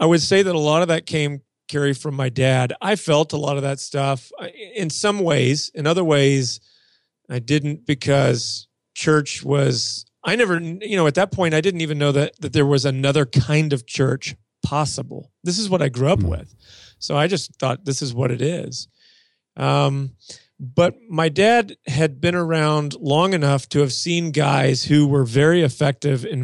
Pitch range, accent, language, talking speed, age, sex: 135-160 Hz, American, English, 195 wpm, 40-59, male